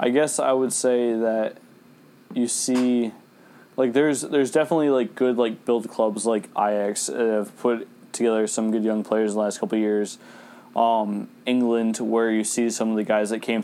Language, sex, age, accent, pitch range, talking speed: English, male, 20-39, American, 105-120 Hz, 195 wpm